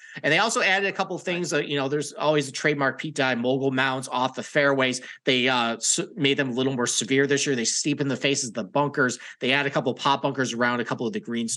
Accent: American